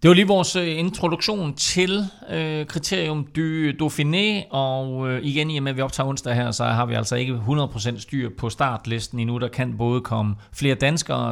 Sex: male